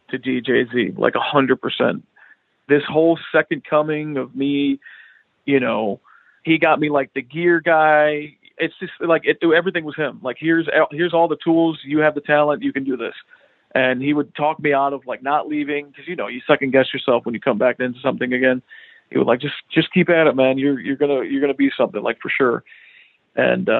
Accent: American